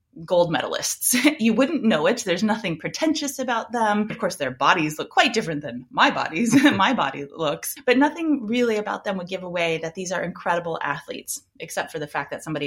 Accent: American